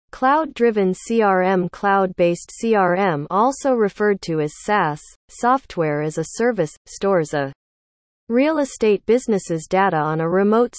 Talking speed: 135 wpm